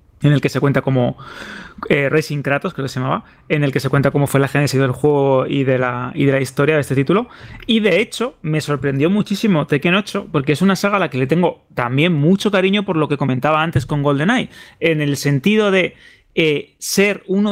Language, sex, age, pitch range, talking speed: Spanish, male, 20-39, 140-175 Hz, 235 wpm